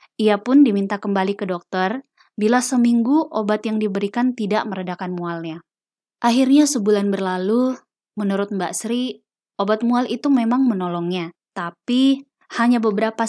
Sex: female